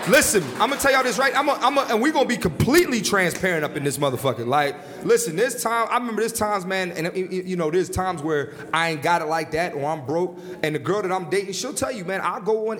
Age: 30-49